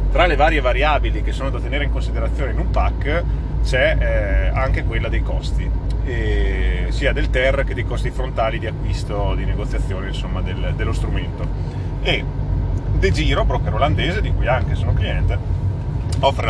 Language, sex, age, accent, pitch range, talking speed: Italian, male, 30-49, native, 85-105 Hz, 155 wpm